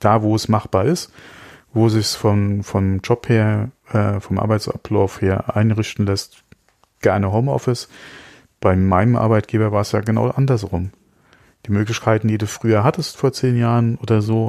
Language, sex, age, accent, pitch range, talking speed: German, male, 40-59, German, 105-115 Hz, 160 wpm